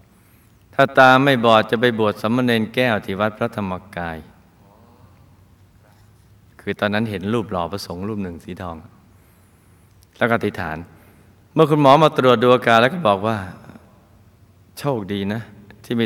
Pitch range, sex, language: 95-120 Hz, male, Thai